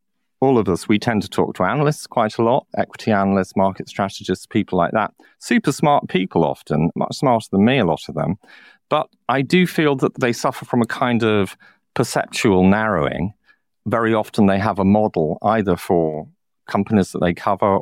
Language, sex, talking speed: English, male, 190 wpm